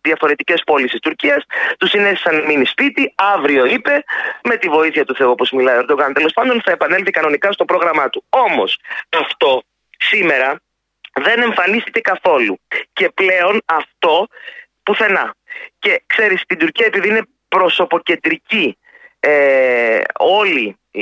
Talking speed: 125 wpm